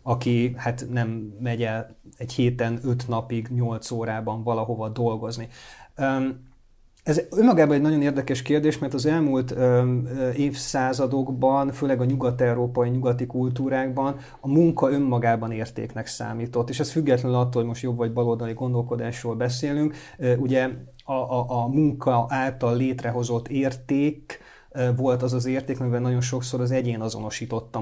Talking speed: 130 wpm